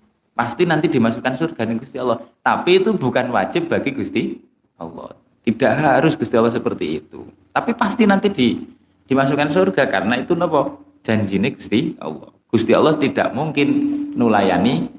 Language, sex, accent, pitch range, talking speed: Indonesian, male, native, 110-170 Hz, 145 wpm